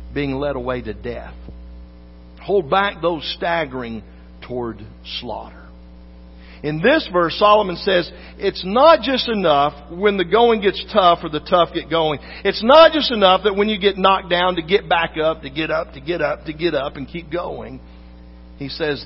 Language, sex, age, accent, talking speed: English, male, 50-69, American, 185 wpm